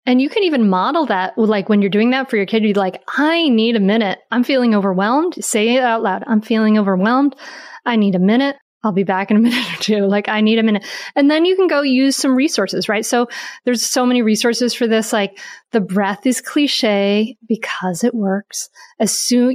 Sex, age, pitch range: female, 30-49, 195-245 Hz